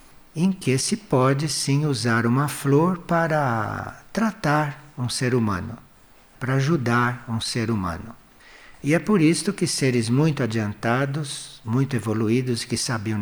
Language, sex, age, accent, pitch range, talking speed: Portuguese, male, 60-79, Brazilian, 115-150 Hz, 135 wpm